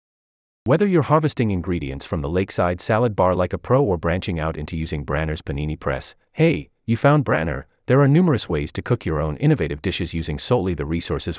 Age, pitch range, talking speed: 30-49, 80-125 Hz, 200 wpm